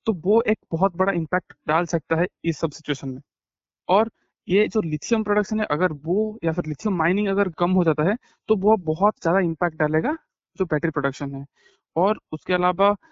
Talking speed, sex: 195 wpm, male